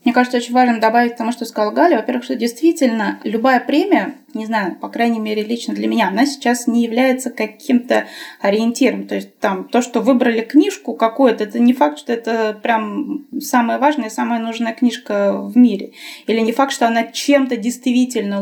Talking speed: 190 wpm